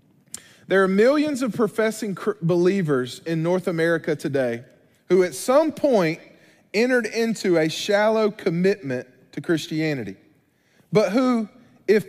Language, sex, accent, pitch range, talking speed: English, male, American, 155-225 Hz, 120 wpm